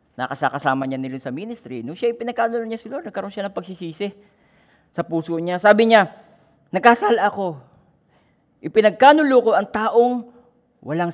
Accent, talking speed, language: native, 145 wpm, Filipino